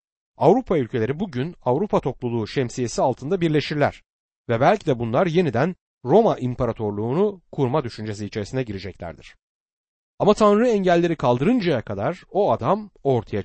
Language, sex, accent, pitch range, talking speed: Turkish, male, native, 110-180 Hz, 120 wpm